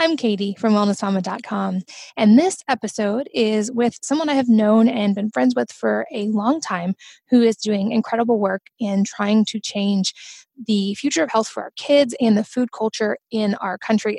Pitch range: 200-245 Hz